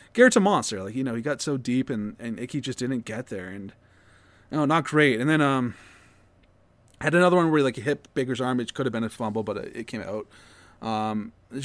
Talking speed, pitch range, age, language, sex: 240 wpm, 115-170 Hz, 20-39, English, male